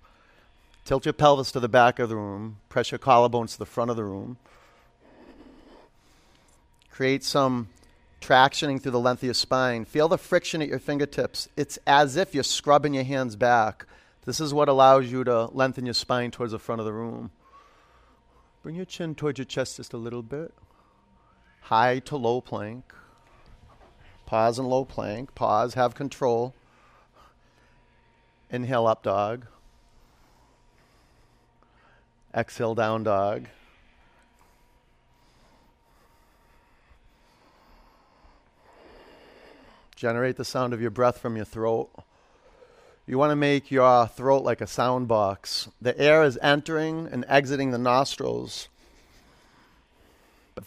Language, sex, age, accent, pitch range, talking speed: English, male, 40-59, American, 115-140 Hz, 130 wpm